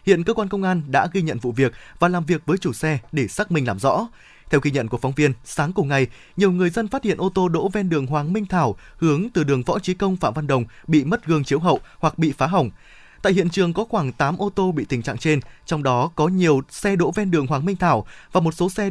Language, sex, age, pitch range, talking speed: Vietnamese, male, 20-39, 135-180 Hz, 280 wpm